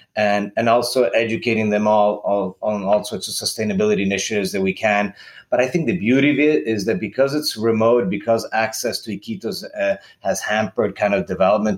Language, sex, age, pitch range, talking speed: English, male, 30-49, 105-135 Hz, 195 wpm